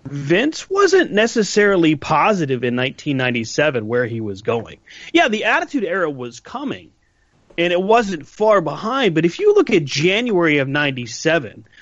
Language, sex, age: English, male, 30-49